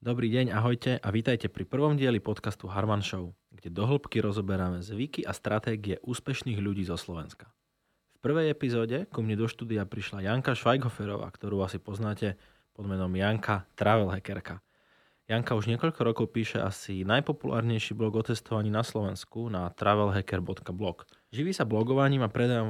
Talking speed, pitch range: 155 wpm, 100-115 Hz